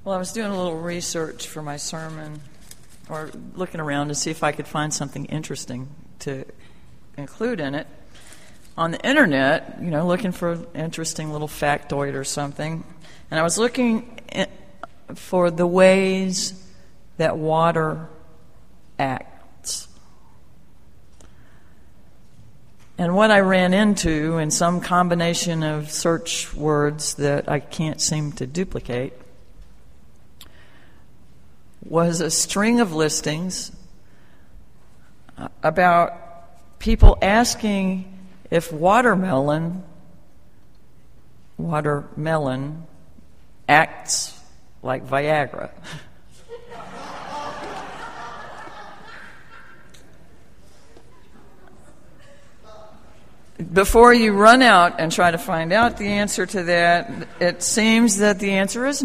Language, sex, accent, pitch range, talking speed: English, female, American, 150-190 Hz, 100 wpm